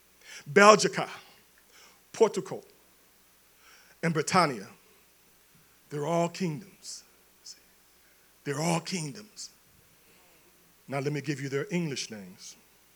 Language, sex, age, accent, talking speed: English, male, 40-59, American, 85 wpm